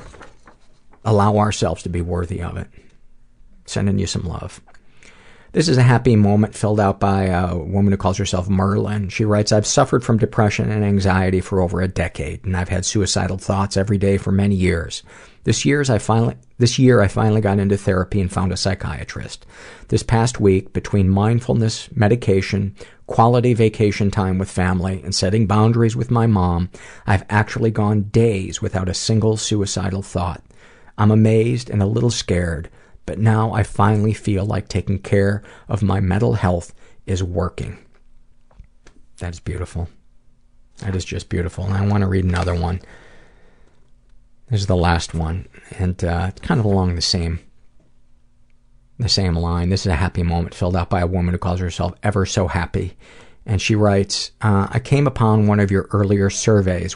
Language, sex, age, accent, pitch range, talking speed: English, male, 50-69, American, 95-110 Hz, 170 wpm